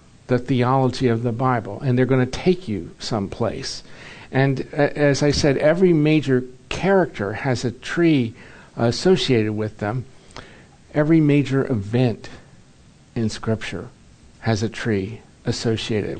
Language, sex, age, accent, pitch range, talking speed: English, male, 50-69, American, 115-140 Hz, 125 wpm